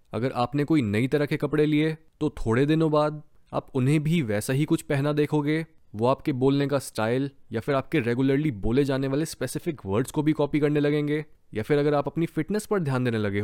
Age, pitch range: 20-39, 120-165 Hz